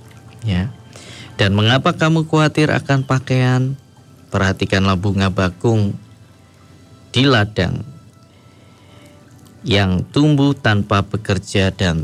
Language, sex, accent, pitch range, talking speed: Indonesian, male, native, 95-120 Hz, 85 wpm